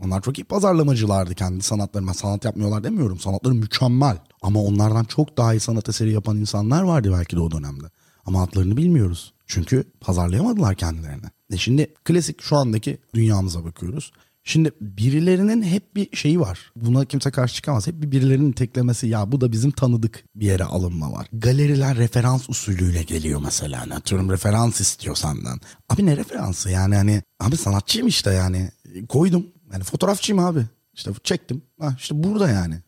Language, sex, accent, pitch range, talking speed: Turkish, male, native, 100-145 Hz, 170 wpm